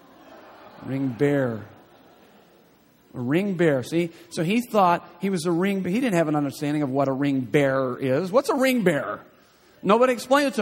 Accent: American